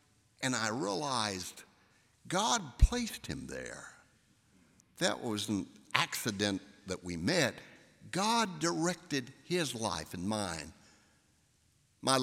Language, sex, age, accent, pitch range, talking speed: English, male, 60-79, American, 95-145 Hz, 105 wpm